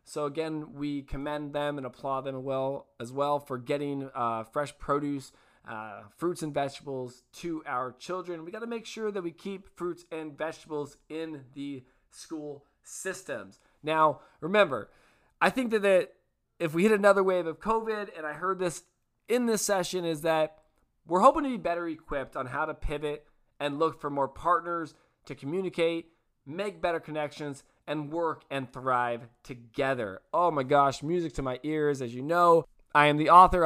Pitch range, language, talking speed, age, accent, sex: 140-175 Hz, English, 175 wpm, 20-39, American, male